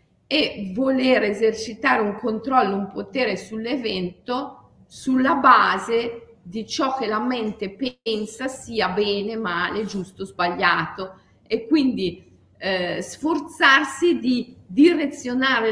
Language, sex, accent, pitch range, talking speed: Italian, female, native, 185-255 Hz, 105 wpm